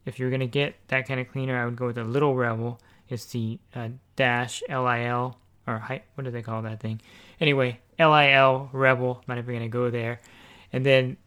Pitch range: 120-135 Hz